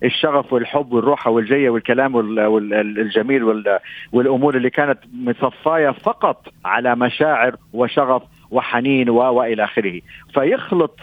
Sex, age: male, 50-69